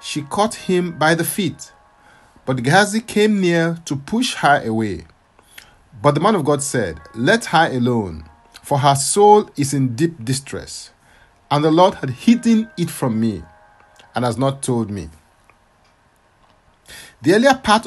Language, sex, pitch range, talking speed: English, male, 115-175 Hz, 155 wpm